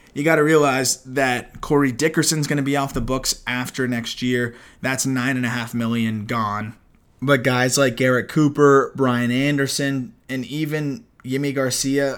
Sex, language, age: male, English, 20-39